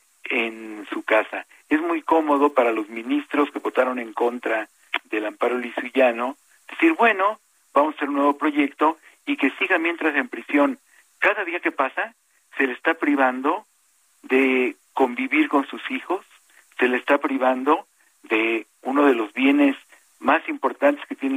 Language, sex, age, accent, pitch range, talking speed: Spanish, male, 50-69, Mexican, 125-180 Hz, 155 wpm